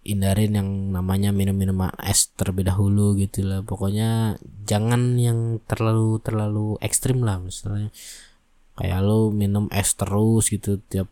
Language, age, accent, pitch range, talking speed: Indonesian, 20-39, native, 95-110 Hz, 125 wpm